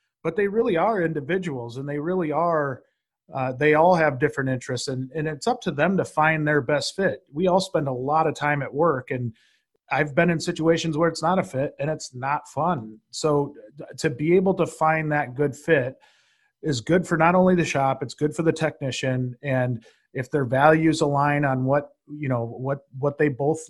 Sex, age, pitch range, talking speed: male, 30-49, 130-155 Hz, 210 wpm